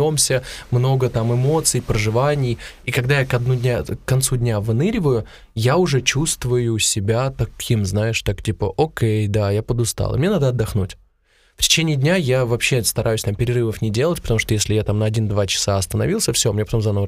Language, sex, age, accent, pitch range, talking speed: Russian, male, 20-39, native, 105-130 Hz, 185 wpm